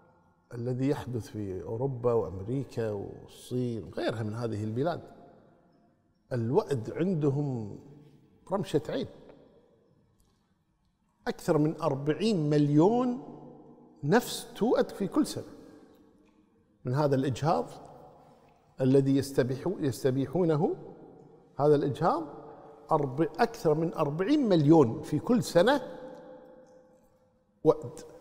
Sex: male